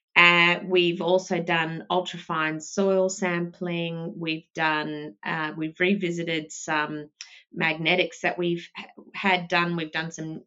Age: 30-49